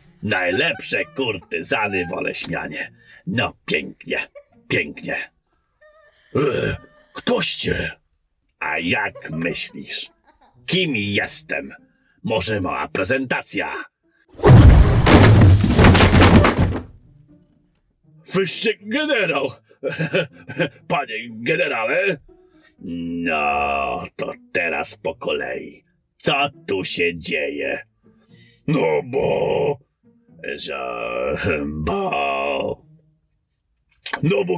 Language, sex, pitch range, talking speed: Polish, male, 105-175 Hz, 60 wpm